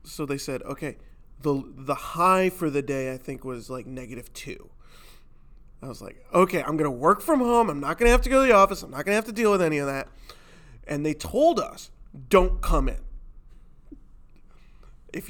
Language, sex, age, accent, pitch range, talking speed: English, male, 20-39, American, 135-180 Hz, 215 wpm